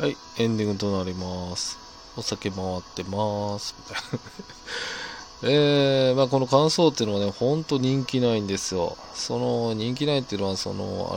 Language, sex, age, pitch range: Japanese, male, 20-39, 100-125 Hz